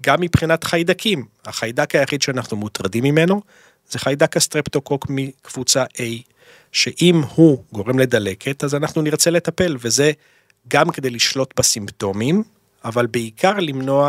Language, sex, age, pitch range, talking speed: Hebrew, male, 40-59, 115-145 Hz, 125 wpm